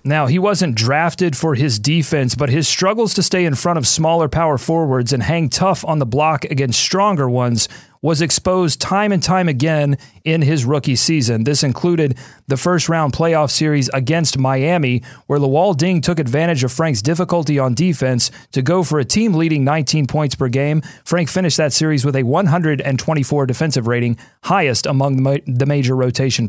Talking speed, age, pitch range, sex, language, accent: 180 wpm, 30-49, 135-170 Hz, male, English, American